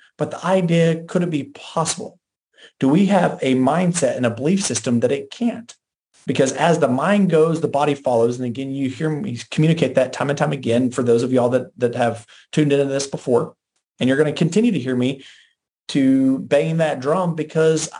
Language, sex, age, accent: English, male, 40-59, American